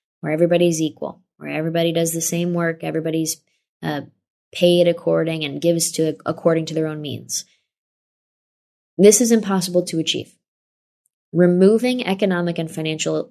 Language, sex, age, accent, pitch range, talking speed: English, female, 20-39, American, 155-180 Hz, 135 wpm